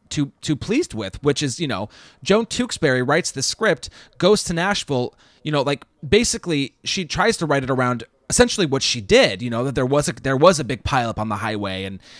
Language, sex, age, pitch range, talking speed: English, male, 30-49, 130-180 Hz, 225 wpm